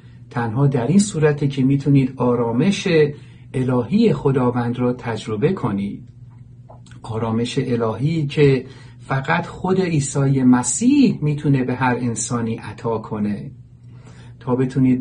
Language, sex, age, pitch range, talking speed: Persian, male, 50-69, 120-145 Hz, 110 wpm